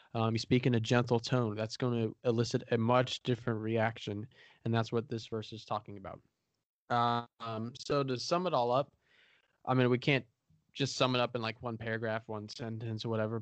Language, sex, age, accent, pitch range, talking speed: English, male, 20-39, American, 115-130 Hz, 205 wpm